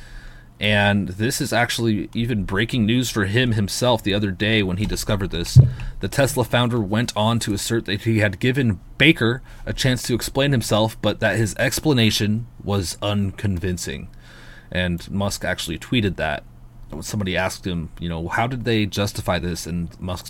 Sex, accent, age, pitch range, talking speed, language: male, American, 30-49, 95-115 Hz, 170 wpm, English